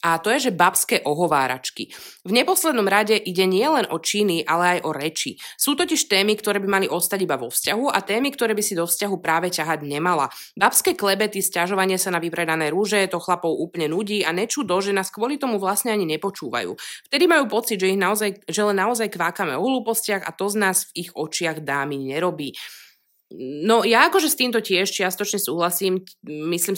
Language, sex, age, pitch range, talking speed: Slovak, female, 20-39, 165-205 Hz, 195 wpm